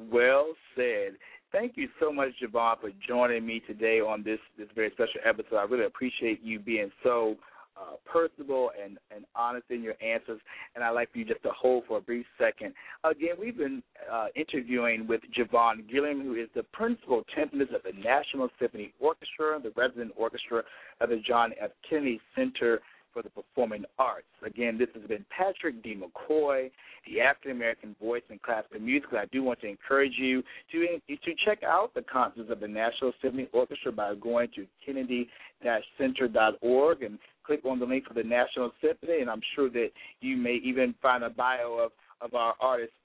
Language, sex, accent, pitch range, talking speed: English, male, American, 115-155 Hz, 180 wpm